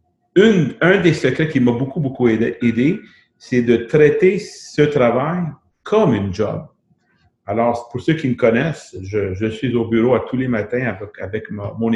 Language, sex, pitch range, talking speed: French, male, 110-135 Hz, 175 wpm